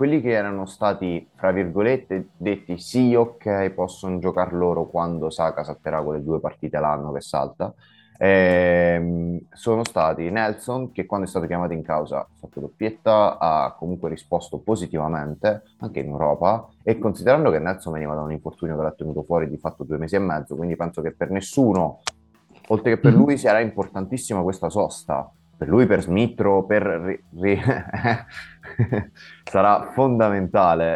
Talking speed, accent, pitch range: 160 wpm, native, 80-100 Hz